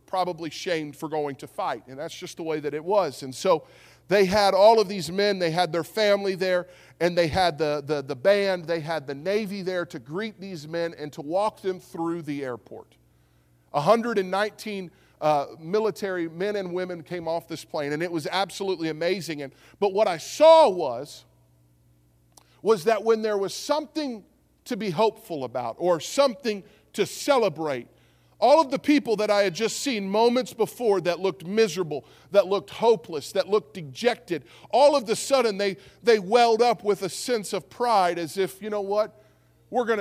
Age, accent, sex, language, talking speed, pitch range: 40-59, American, male, English, 195 wpm, 155-210 Hz